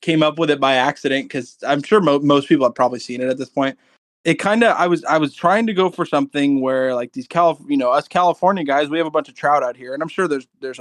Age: 20-39